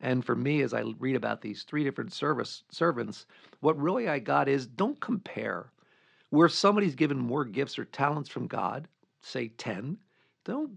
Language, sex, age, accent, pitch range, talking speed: English, male, 50-69, American, 130-175 Hz, 165 wpm